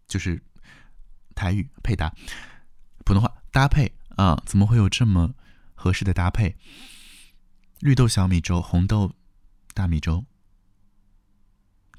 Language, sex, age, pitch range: Chinese, male, 20-39, 90-115 Hz